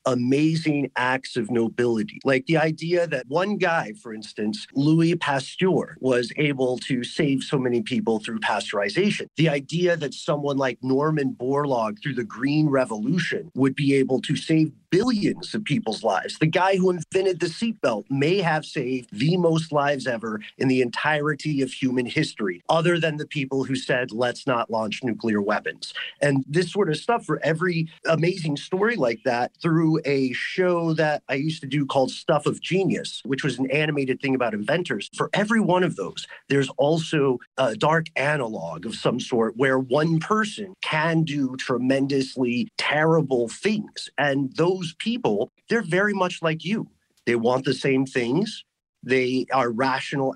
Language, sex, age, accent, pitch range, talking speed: English, male, 30-49, American, 130-165 Hz, 165 wpm